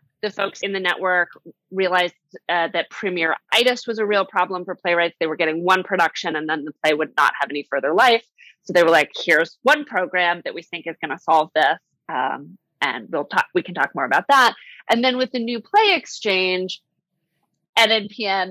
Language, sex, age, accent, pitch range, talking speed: English, female, 30-49, American, 155-195 Hz, 205 wpm